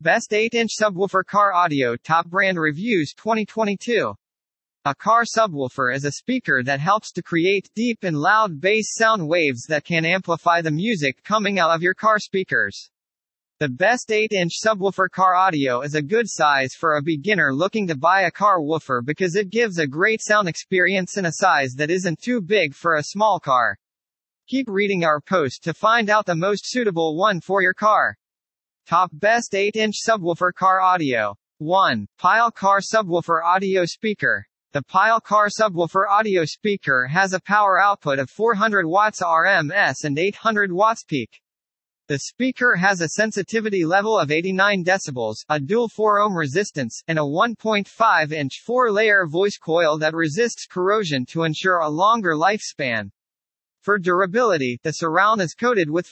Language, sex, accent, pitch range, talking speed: English, male, American, 160-215 Hz, 160 wpm